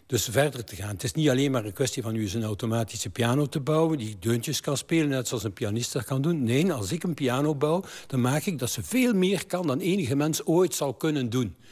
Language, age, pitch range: Dutch, 60-79, 115-145 Hz